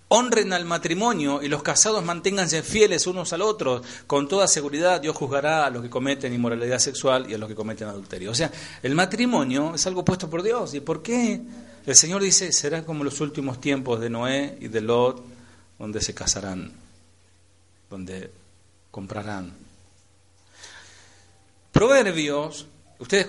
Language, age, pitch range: Spanish, 40-59, 115-165 Hz